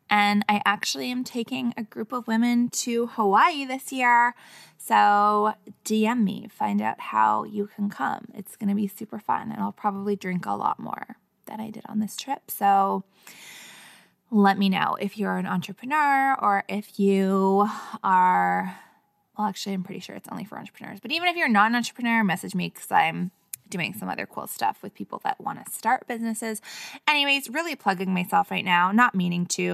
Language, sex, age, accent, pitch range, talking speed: English, female, 20-39, American, 190-230 Hz, 190 wpm